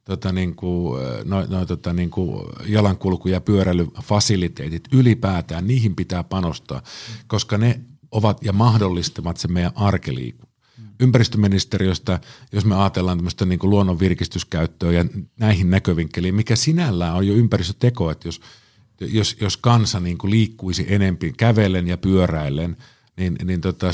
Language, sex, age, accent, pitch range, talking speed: Finnish, male, 50-69, native, 90-115 Hz, 135 wpm